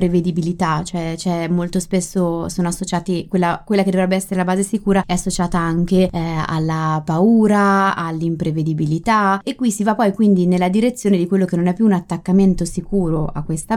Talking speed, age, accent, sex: 180 wpm, 20-39, native, female